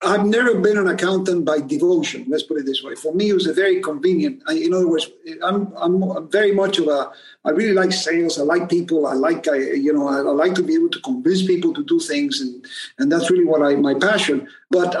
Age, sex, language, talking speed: 50-69, male, English, 250 wpm